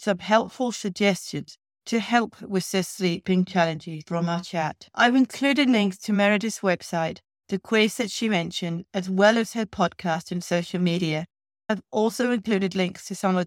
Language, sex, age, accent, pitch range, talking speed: English, female, 40-59, British, 165-210 Hz, 170 wpm